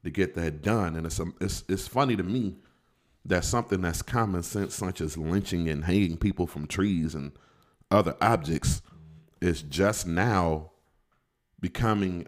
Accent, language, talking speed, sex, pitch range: American, English, 155 wpm, male, 80-95 Hz